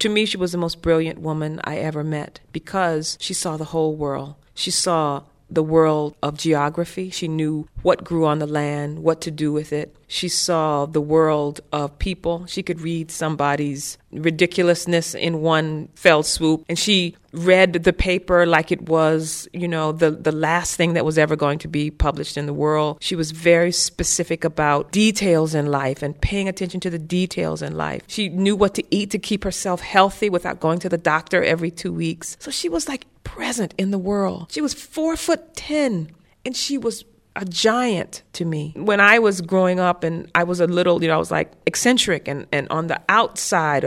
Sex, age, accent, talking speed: female, 40-59, American, 200 wpm